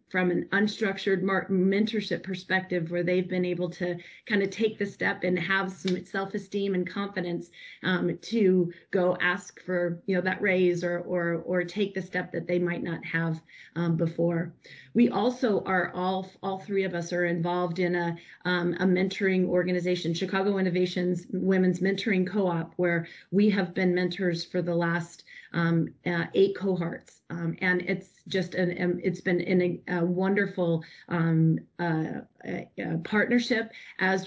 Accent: American